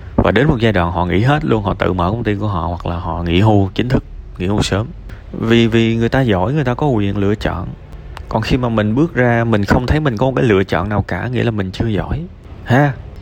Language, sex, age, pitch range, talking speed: Vietnamese, male, 20-39, 90-115 Hz, 275 wpm